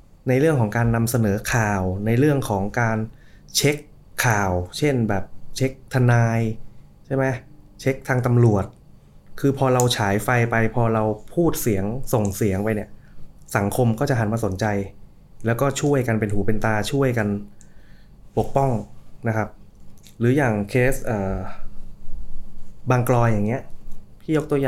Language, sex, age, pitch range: Thai, male, 20-39, 105-125 Hz